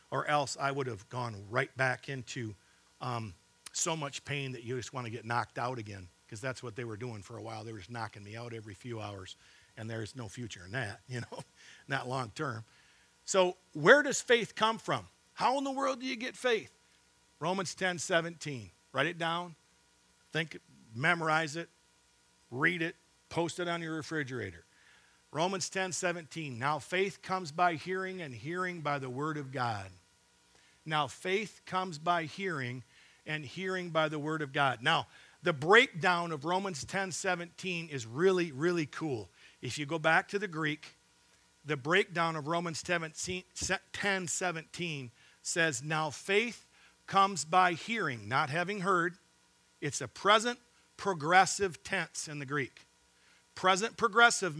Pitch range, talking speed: 120-180 Hz, 165 wpm